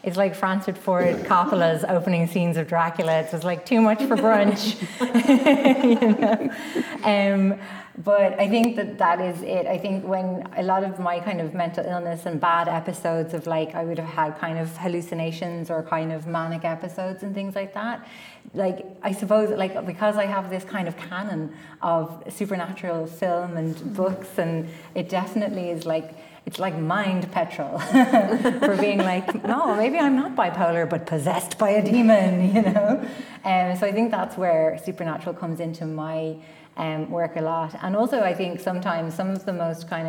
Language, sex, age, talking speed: English, female, 30-49, 180 wpm